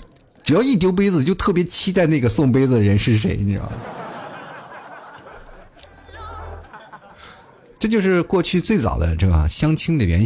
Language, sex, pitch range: Chinese, male, 95-135 Hz